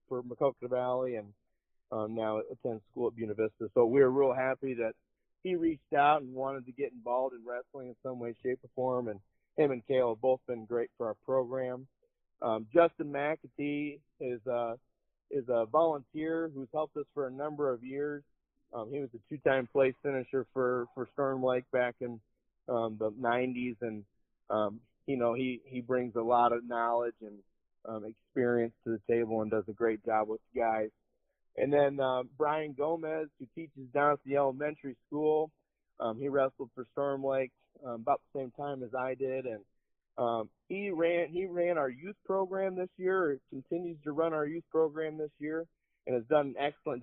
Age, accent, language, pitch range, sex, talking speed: 30-49, American, English, 120-145 Hz, male, 195 wpm